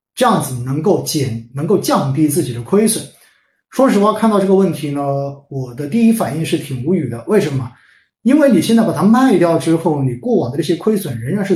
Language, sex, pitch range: Chinese, male, 135-195 Hz